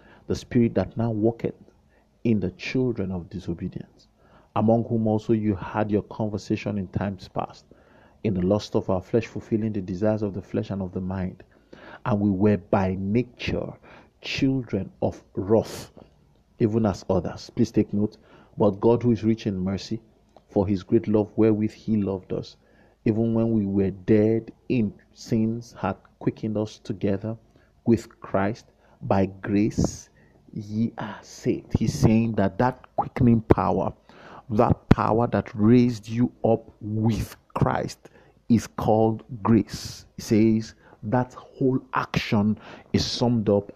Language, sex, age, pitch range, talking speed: English, male, 50-69, 100-115 Hz, 150 wpm